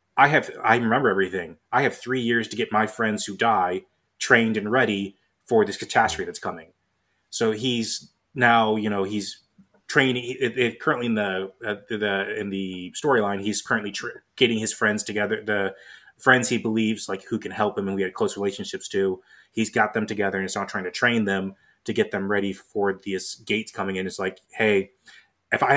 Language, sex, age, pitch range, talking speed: English, male, 20-39, 100-110 Hz, 205 wpm